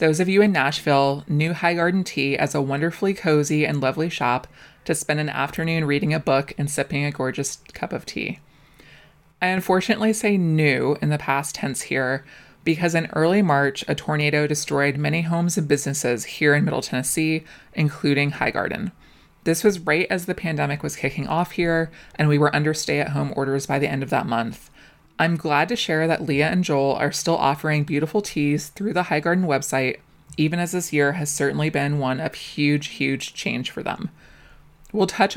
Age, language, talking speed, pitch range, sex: 20-39, English, 195 wpm, 140-170 Hz, female